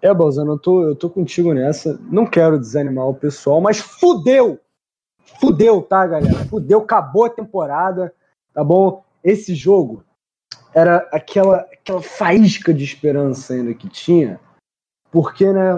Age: 20-39